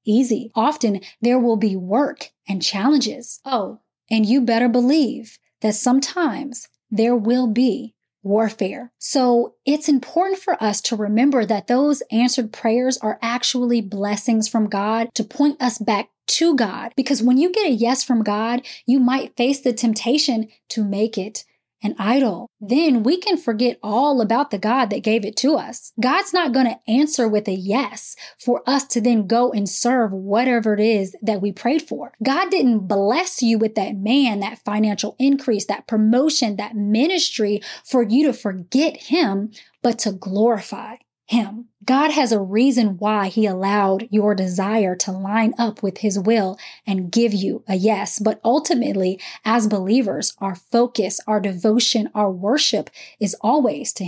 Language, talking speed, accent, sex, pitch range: English, 165 wpm, American, female, 215-255 Hz